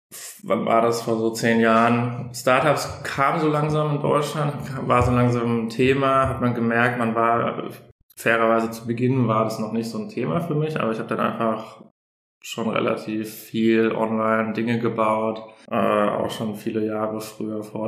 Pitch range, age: 110-130 Hz, 20-39